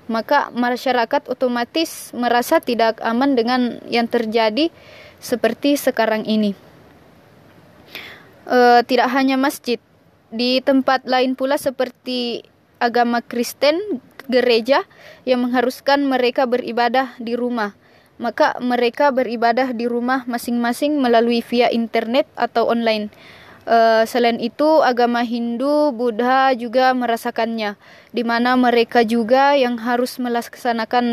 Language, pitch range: Indonesian, 235-260 Hz